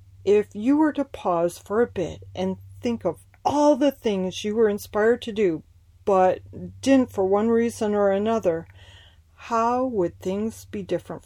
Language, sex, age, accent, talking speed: English, female, 40-59, American, 165 wpm